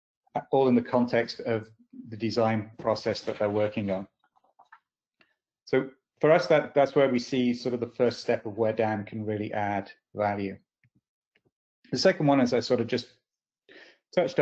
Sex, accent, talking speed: male, British, 170 wpm